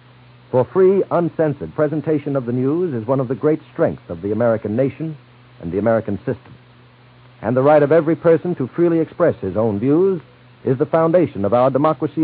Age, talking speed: 60-79, 190 wpm